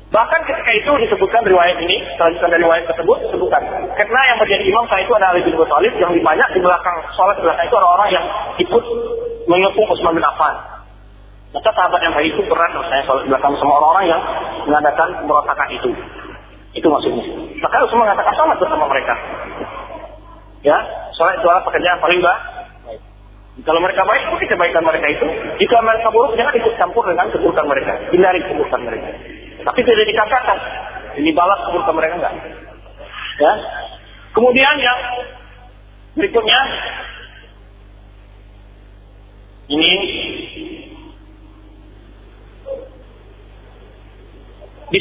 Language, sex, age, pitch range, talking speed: Malay, male, 40-59, 150-245 Hz, 135 wpm